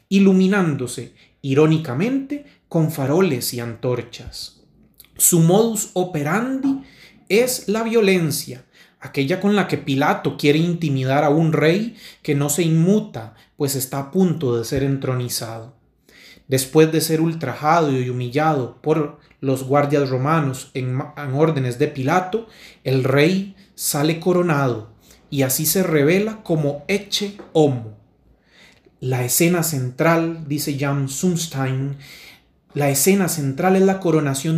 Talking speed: 125 wpm